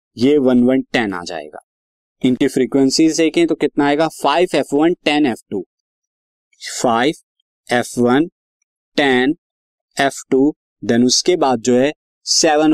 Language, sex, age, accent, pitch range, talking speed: Hindi, male, 20-39, native, 125-165 Hz, 140 wpm